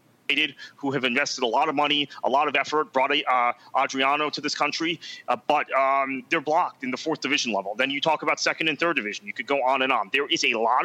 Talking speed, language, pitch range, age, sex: 250 wpm, English, 125-155 Hz, 30-49, male